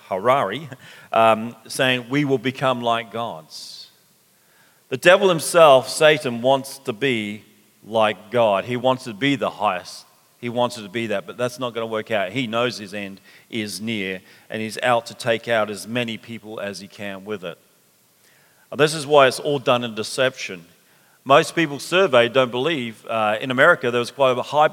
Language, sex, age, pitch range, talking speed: English, male, 40-59, 115-135 Hz, 190 wpm